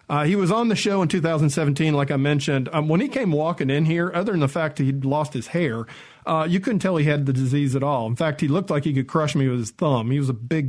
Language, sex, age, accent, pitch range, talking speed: English, male, 50-69, American, 140-180 Hz, 300 wpm